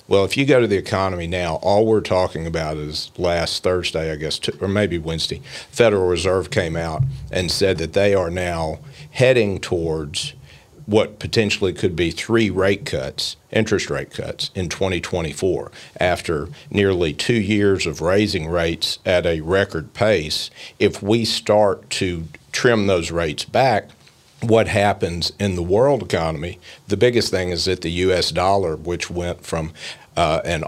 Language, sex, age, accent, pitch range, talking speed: English, male, 50-69, American, 85-100 Hz, 160 wpm